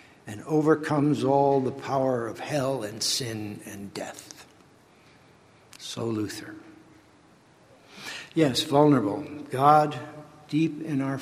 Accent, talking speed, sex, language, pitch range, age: American, 100 wpm, male, English, 125-160 Hz, 60-79